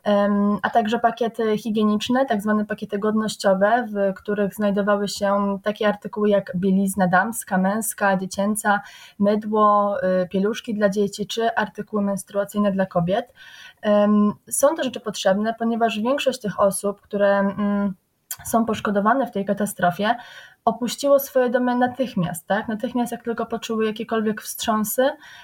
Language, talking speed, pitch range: Polish, 120 wpm, 200-235 Hz